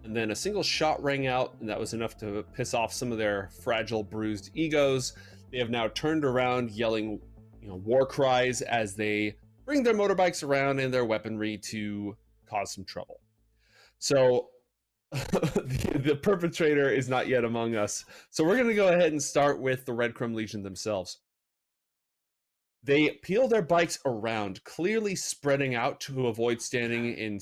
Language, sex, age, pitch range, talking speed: English, male, 30-49, 110-140 Hz, 165 wpm